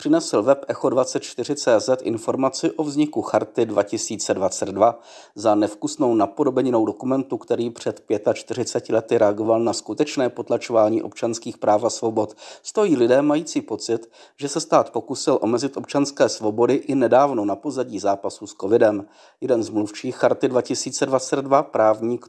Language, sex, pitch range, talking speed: Czech, male, 115-150 Hz, 125 wpm